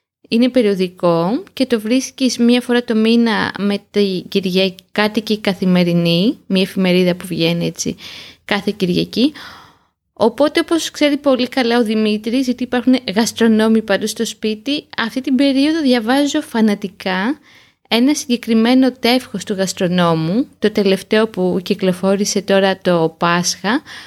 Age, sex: 20-39, female